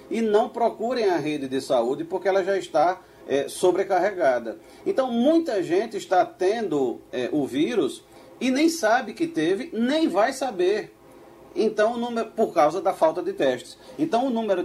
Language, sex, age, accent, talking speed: Portuguese, male, 40-59, Brazilian, 170 wpm